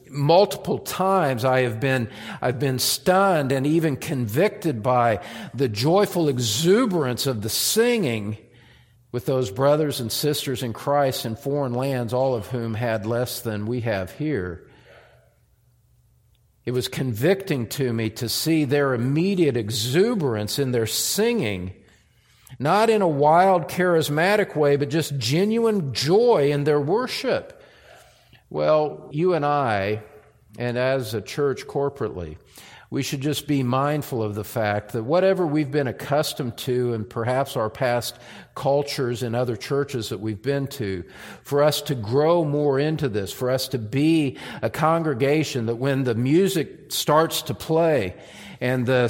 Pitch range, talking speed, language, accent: 120-155 Hz, 145 wpm, English, American